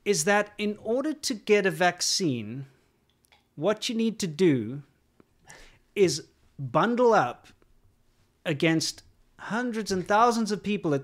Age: 30-49